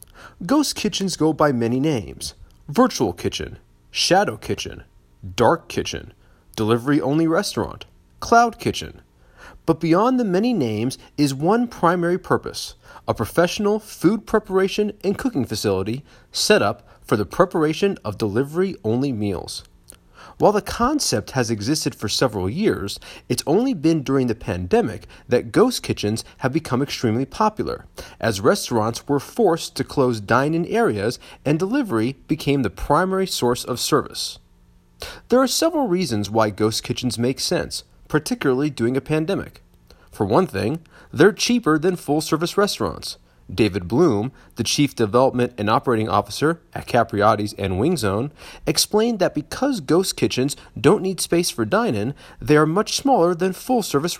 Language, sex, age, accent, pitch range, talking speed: English, male, 30-49, American, 115-185 Hz, 140 wpm